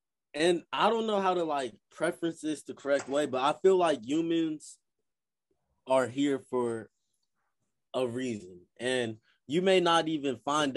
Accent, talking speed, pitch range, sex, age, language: American, 155 wpm, 105-145 Hz, male, 20-39, English